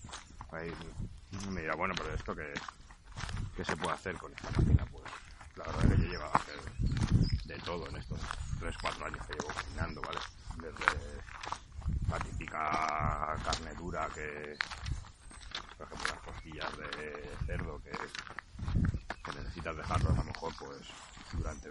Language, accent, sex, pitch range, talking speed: Spanish, Spanish, male, 80-95 Hz, 145 wpm